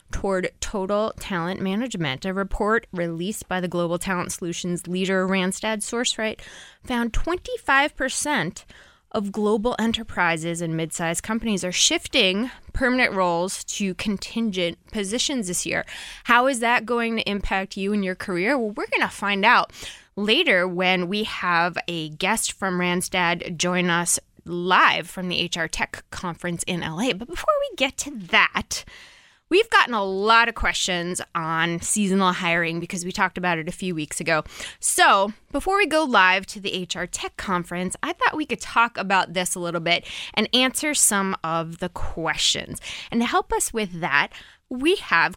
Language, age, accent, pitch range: English, 20-39, American, 180-235 Hz